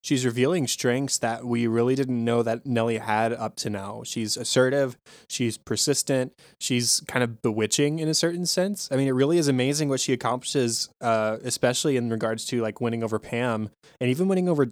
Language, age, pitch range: English, 20-39, 110-130 Hz